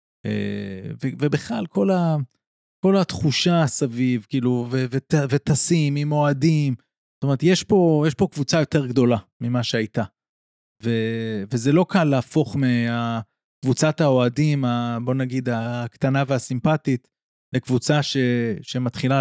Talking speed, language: 95 wpm, Hebrew